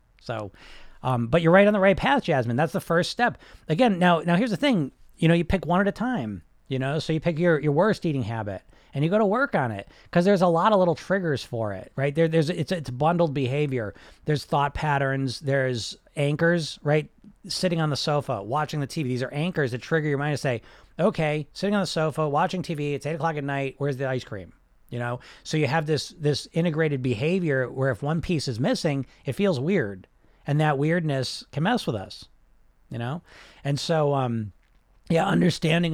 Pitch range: 125-170 Hz